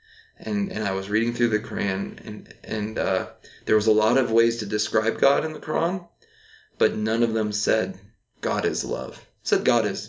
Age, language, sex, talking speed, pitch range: 20-39, English, male, 200 wpm, 105-115 Hz